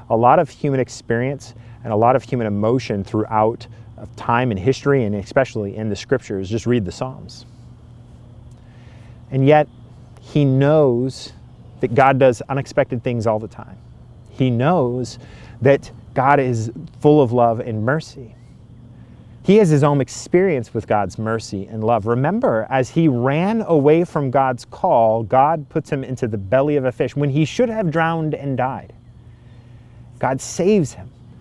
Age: 30-49